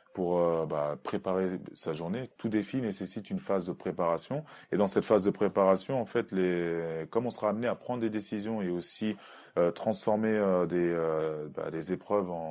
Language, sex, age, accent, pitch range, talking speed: French, male, 20-39, French, 80-100 Hz, 190 wpm